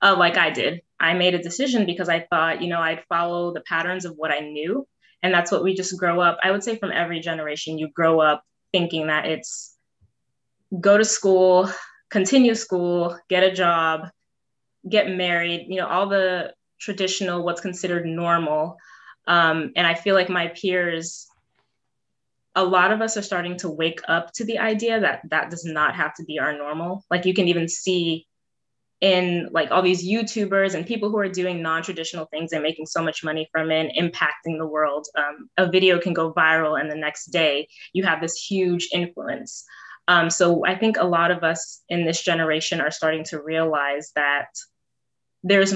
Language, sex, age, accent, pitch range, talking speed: English, female, 20-39, American, 160-185 Hz, 190 wpm